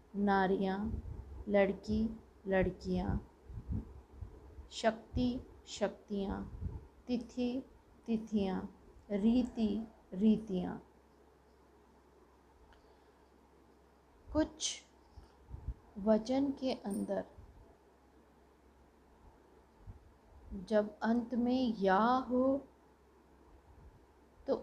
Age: 20-39